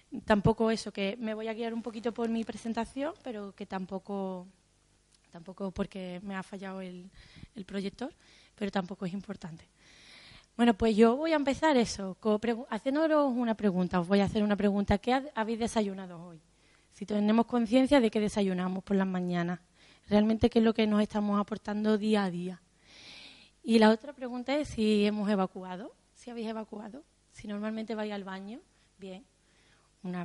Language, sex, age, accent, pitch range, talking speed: Spanish, female, 20-39, Spanish, 195-235 Hz, 175 wpm